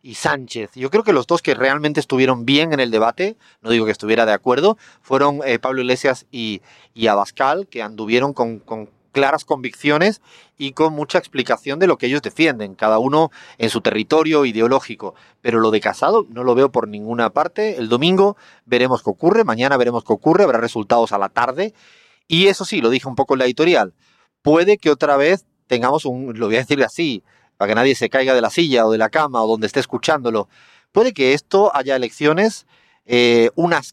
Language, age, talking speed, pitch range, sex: Spanish, 30-49, 205 wpm, 120-155 Hz, male